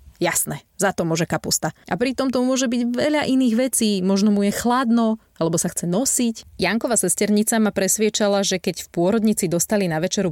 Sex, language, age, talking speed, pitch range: female, Slovak, 30-49, 190 wpm, 165-210 Hz